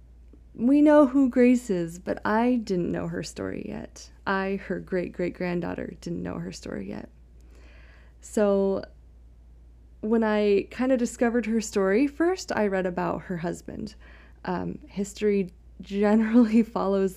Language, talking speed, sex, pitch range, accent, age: English, 135 wpm, female, 170-215 Hz, American, 20-39